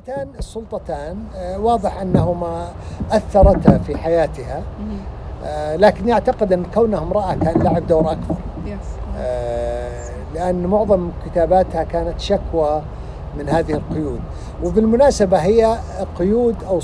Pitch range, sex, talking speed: 165-215 Hz, male, 95 wpm